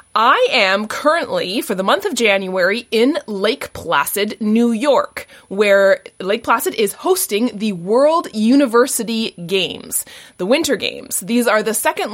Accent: American